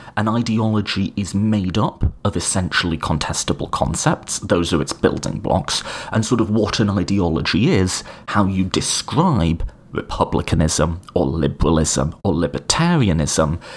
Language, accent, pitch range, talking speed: English, British, 85-115 Hz, 125 wpm